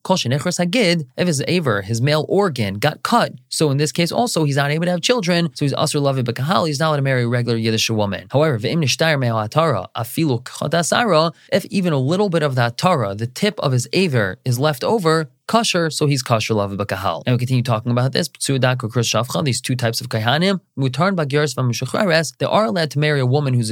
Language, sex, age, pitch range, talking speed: English, male, 20-39, 125-165 Hz, 190 wpm